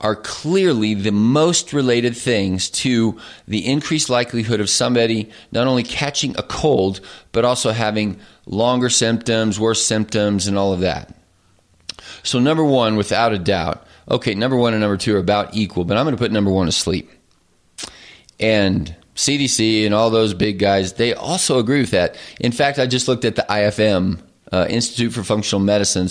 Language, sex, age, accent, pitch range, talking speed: English, male, 30-49, American, 100-125 Hz, 175 wpm